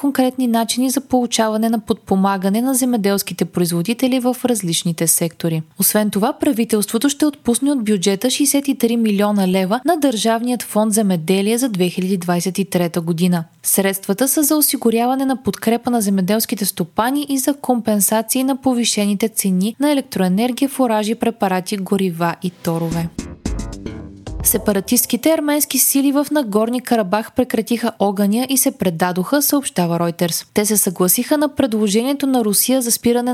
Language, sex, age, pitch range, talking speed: Bulgarian, female, 20-39, 195-260 Hz, 130 wpm